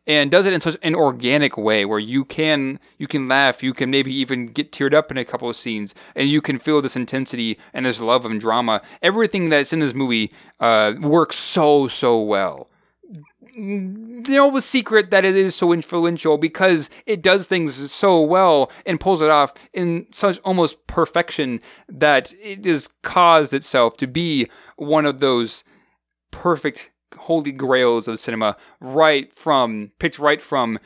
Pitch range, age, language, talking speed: 125-185 Hz, 30-49, English, 175 wpm